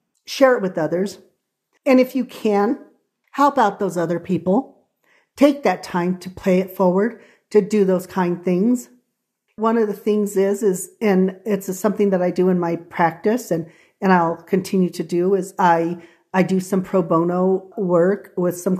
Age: 40-59